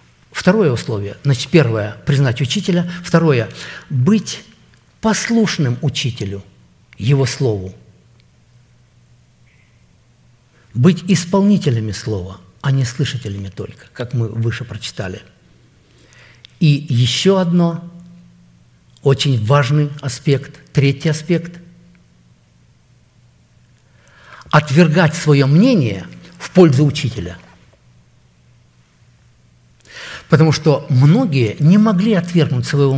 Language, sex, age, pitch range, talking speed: Russian, male, 50-69, 115-160 Hz, 85 wpm